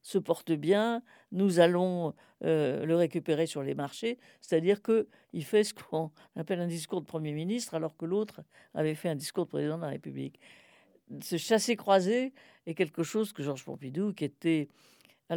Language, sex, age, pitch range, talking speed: French, female, 50-69, 145-185 Hz, 180 wpm